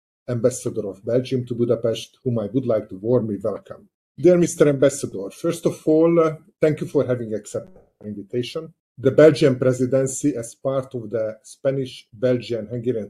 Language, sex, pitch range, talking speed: Hungarian, male, 115-140 Hz, 155 wpm